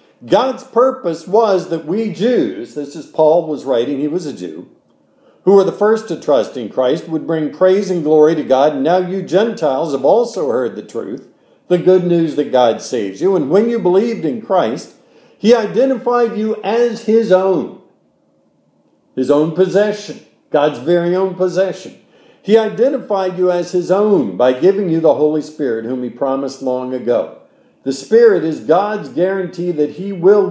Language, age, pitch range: English, 50-69, 155-225 Hz